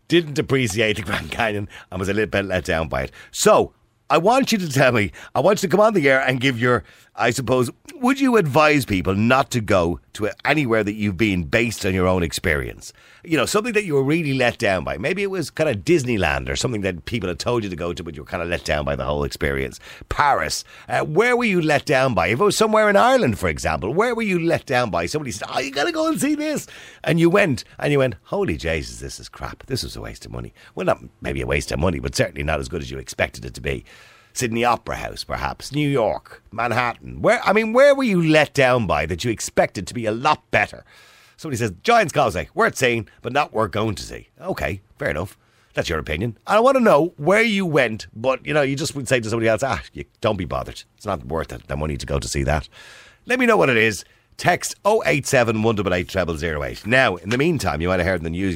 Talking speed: 260 wpm